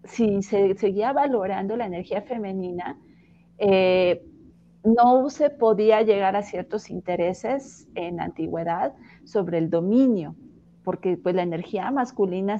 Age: 40-59